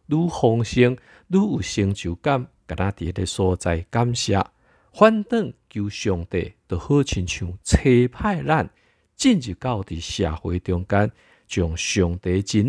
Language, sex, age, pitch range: Chinese, male, 50-69, 90-120 Hz